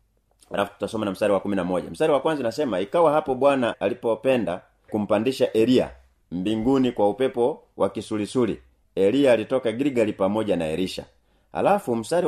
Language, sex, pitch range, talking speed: Swahili, male, 100-130 Hz, 135 wpm